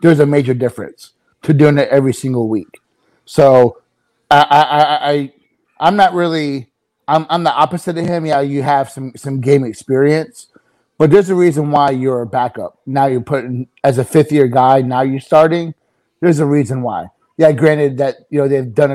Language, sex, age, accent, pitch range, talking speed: English, male, 30-49, American, 130-155 Hz, 195 wpm